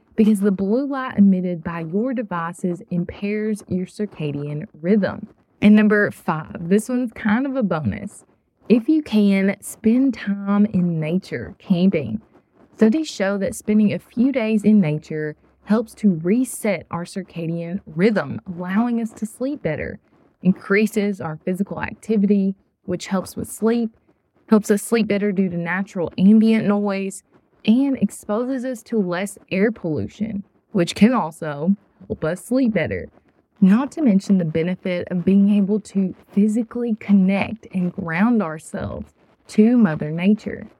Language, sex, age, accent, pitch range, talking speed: English, female, 20-39, American, 180-225 Hz, 145 wpm